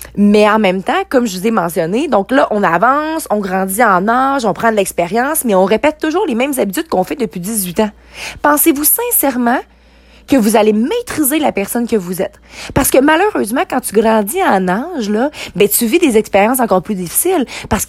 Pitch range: 200-270 Hz